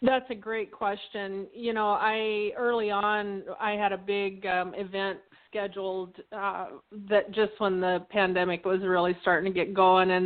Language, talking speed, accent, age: English, 170 wpm, American, 30-49